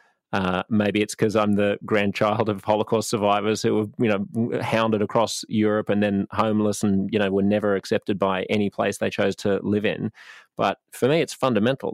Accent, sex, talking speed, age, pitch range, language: Australian, male, 195 wpm, 30-49, 100-115 Hz, English